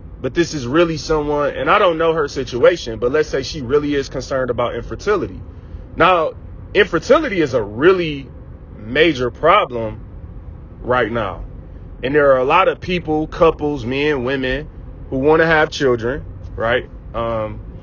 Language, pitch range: English, 120-165 Hz